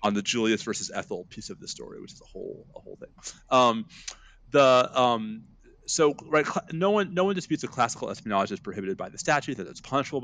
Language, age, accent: English, 30-49, American